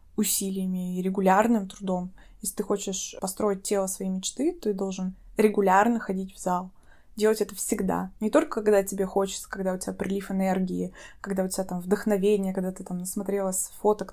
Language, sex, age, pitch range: Russian, female, 20-39, 190-215 Hz